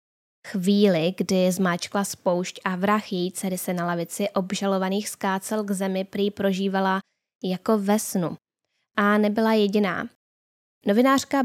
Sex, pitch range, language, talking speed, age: female, 185-220 Hz, Czech, 125 wpm, 10-29